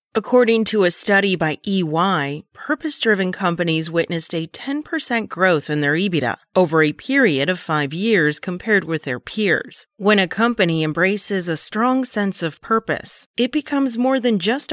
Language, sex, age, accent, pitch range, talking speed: English, female, 30-49, American, 155-225 Hz, 160 wpm